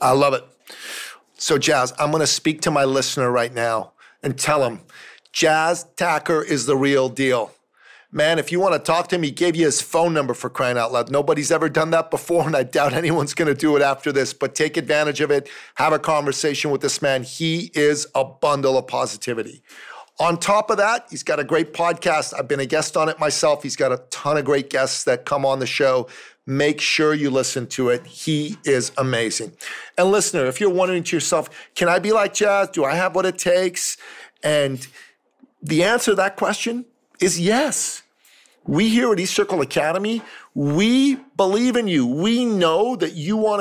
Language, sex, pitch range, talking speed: English, male, 145-195 Hz, 210 wpm